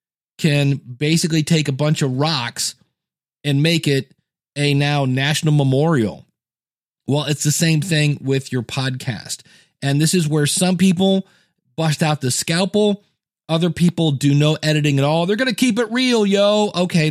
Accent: American